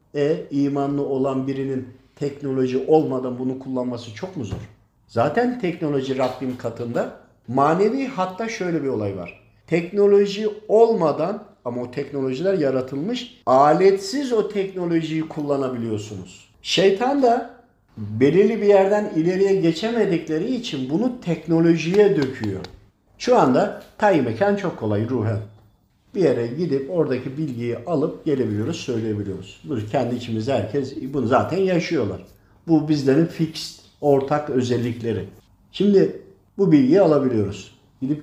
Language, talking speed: Turkish, 115 wpm